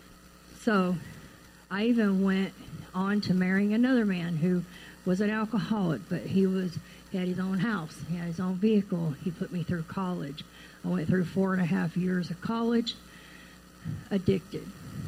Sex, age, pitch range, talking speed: female, 50-69, 170-195 Hz, 165 wpm